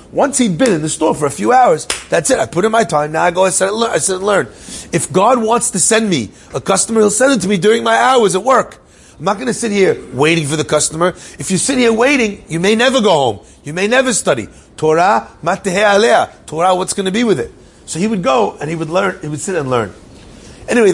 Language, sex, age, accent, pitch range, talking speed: English, male, 30-49, American, 155-205 Hz, 265 wpm